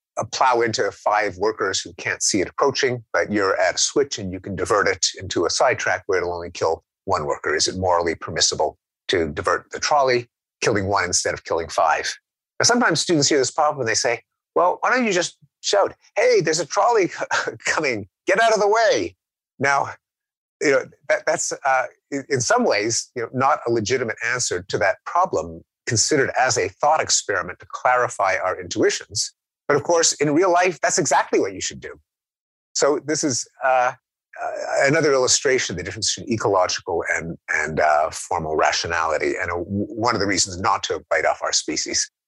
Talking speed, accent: 195 wpm, American